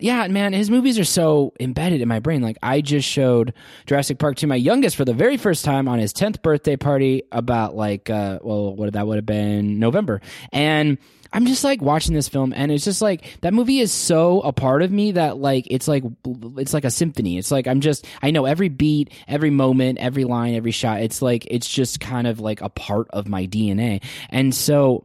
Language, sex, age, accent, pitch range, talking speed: English, male, 20-39, American, 110-150 Hz, 225 wpm